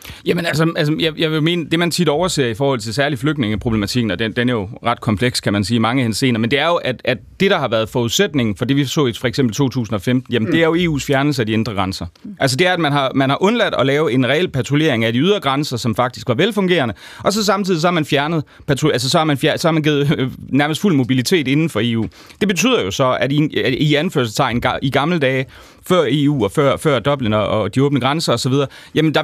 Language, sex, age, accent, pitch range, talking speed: Danish, male, 30-49, native, 115-155 Hz, 255 wpm